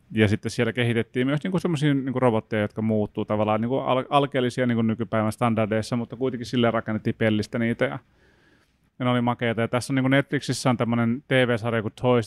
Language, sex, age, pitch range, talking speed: Finnish, male, 30-49, 105-120 Hz, 185 wpm